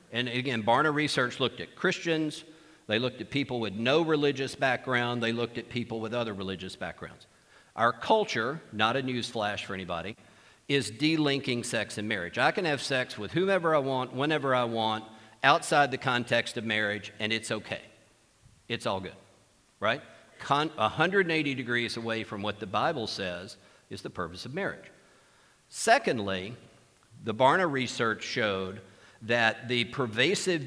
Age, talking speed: 50-69, 155 wpm